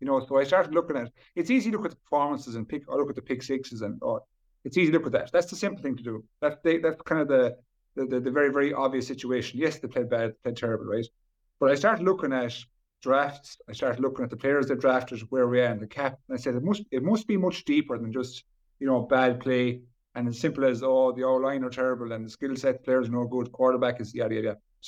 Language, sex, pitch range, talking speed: English, male, 120-150 Hz, 280 wpm